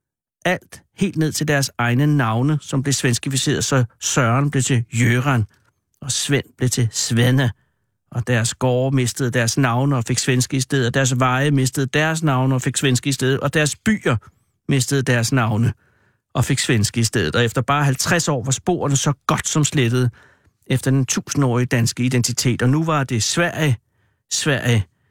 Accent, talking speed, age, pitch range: native, 180 wpm, 60-79, 125-150 Hz